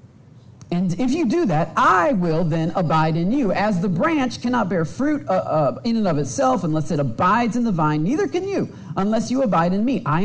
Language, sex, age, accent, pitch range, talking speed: English, male, 40-59, American, 135-200 Hz, 225 wpm